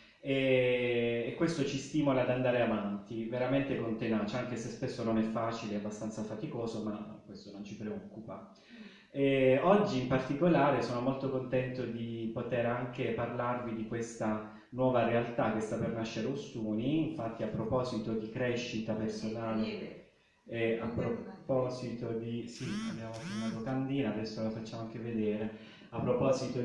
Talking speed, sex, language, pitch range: 150 wpm, male, Italian, 115-135 Hz